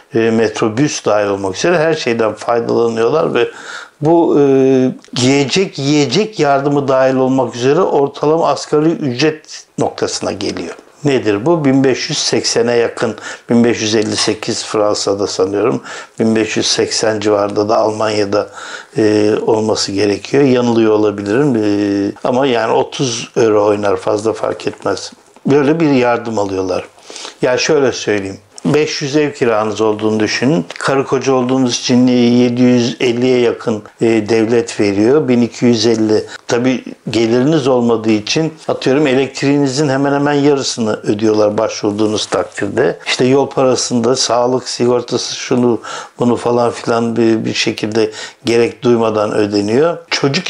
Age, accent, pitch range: 60-79, native, 110-140 Hz